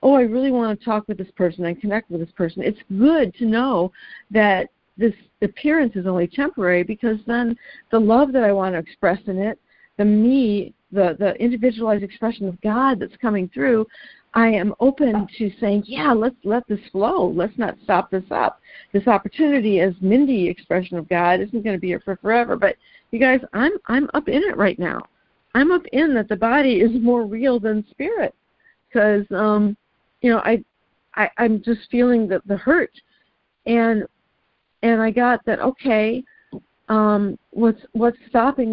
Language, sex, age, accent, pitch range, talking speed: English, female, 50-69, American, 205-245 Hz, 185 wpm